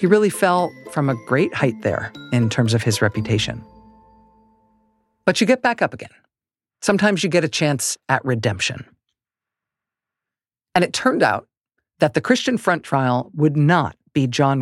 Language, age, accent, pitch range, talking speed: English, 50-69, American, 125-175 Hz, 160 wpm